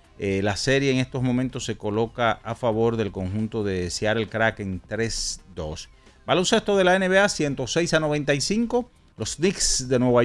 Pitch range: 100-135 Hz